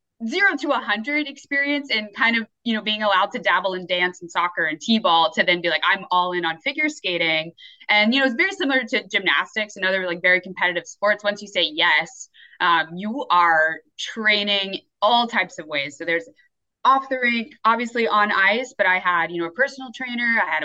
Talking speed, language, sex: 215 wpm, English, female